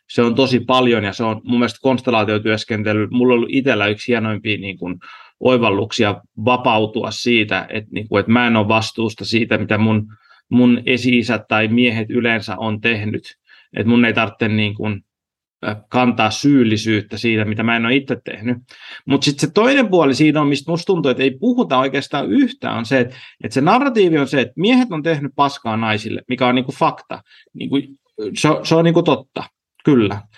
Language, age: Finnish, 30-49